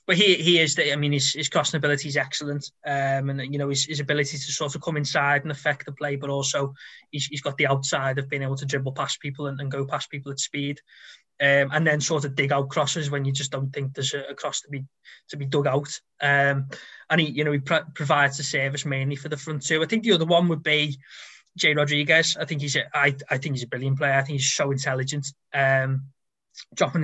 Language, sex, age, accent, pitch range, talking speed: English, male, 20-39, British, 140-150 Hz, 255 wpm